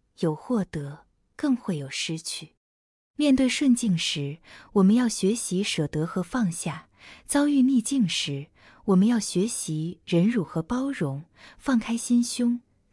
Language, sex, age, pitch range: Chinese, female, 20-39, 160-245 Hz